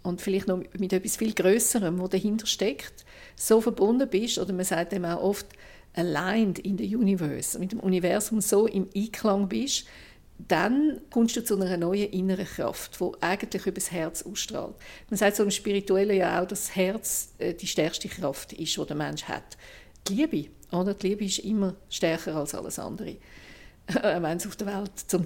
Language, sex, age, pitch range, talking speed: German, female, 50-69, 165-200 Hz, 190 wpm